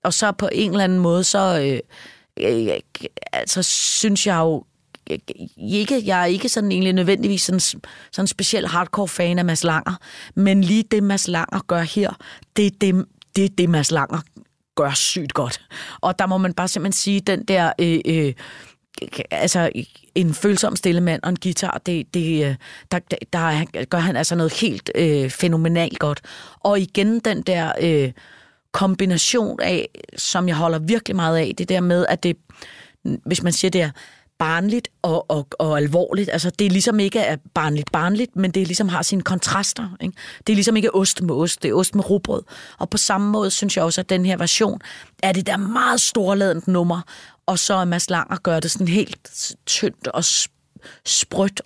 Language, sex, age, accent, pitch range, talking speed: Danish, female, 30-49, native, 165-200 Hz, 190 wpm